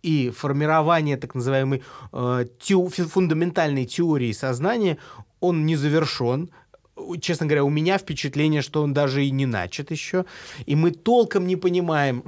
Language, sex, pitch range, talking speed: Russian, male, 130-170 Hz, 130 wpm